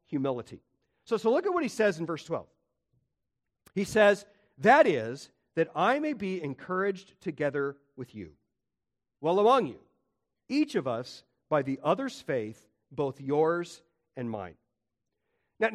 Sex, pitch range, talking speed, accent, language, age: male, 150-225 Hz, 145 wpm, American, English, 40-59